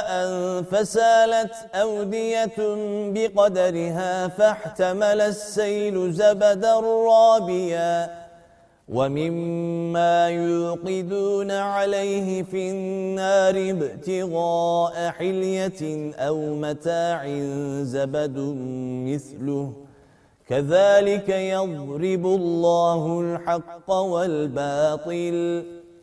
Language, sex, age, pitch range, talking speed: Turkish, male, 30-49, 170-210 Hz, 55 wpm